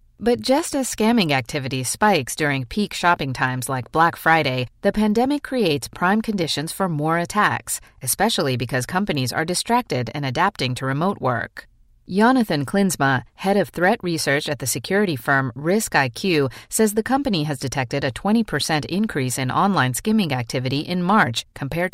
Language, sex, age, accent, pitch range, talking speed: English, female, 40-59, American, 130-200 Hz, 155 wpm